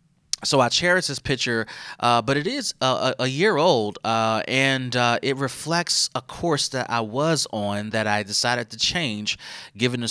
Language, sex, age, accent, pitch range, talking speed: English, male, 30-49, American, 110-135 Hz, 190 wpm